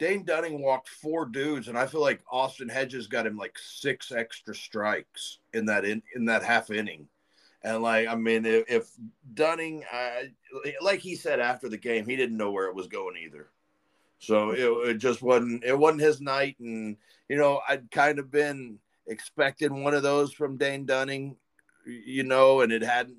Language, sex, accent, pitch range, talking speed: English, male, American, 105-140 Hz, 185 wpm